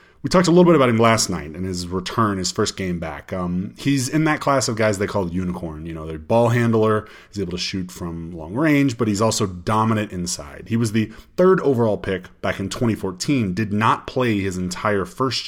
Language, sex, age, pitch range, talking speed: English, male, 30-49, 95-125 Hz, 225 wpm